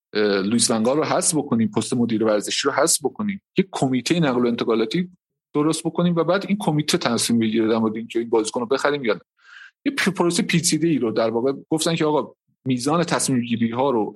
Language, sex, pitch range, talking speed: Persian, male, 110-165 Hz, 180 wpm